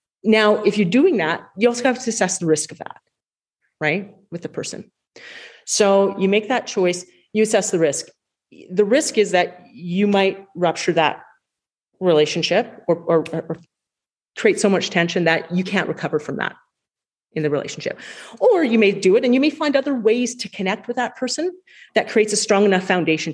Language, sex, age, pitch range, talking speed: English, female, 40-59, 170-230 Hz, 190 wpm